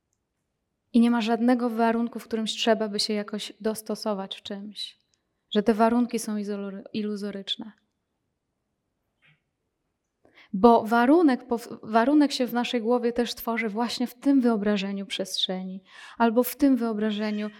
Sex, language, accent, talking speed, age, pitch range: female, Polish, native, 130 wpm, 20-39, 205-230 Hz